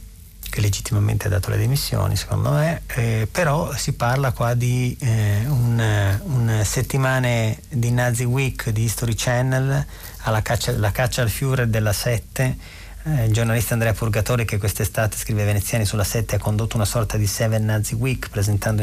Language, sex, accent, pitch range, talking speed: Italian, male, native, 100-125 Hz, 165 wpm